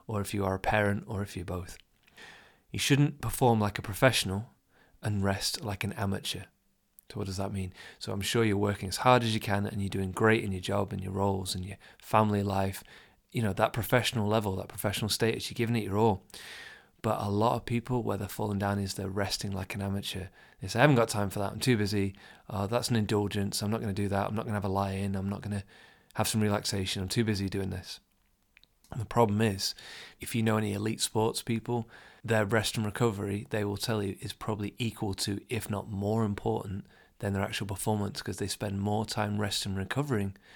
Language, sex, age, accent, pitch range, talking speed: English, male, 30-49, British, 100-115 Hz, 230 wpm